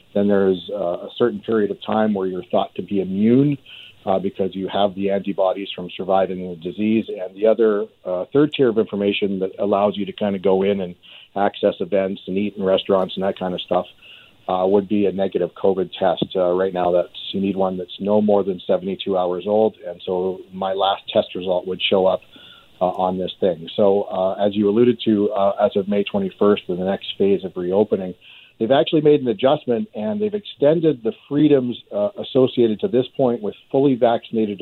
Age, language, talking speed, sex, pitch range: 50-69, English, 210 wpm, male, 95-110 Hz